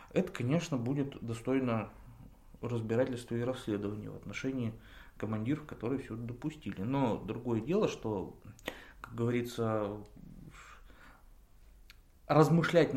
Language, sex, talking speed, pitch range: Russian, male, 95 wpm, 105-145 Hz